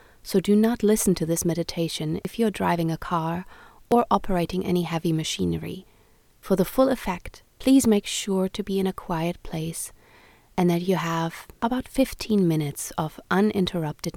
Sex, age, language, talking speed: female, 30-49, English, 165 wpm